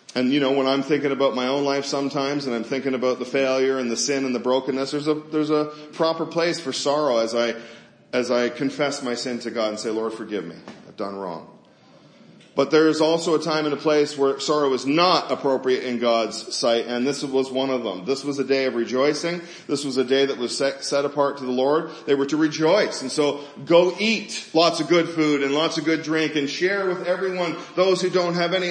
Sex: male